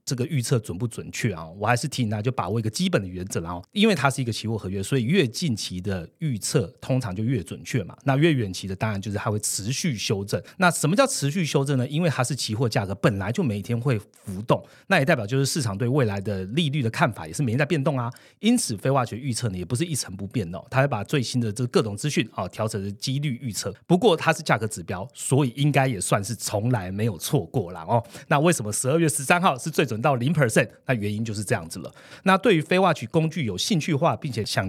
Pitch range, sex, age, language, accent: 110-155 Hz, male, 30-49, Chinese, native